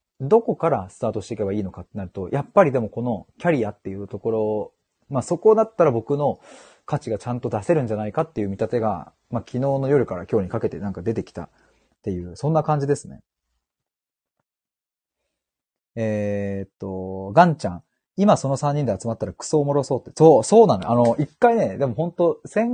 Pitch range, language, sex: 105-165 Hz, Japanese, male